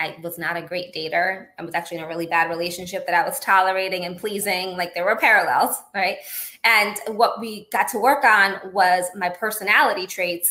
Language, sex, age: English, female, 20-39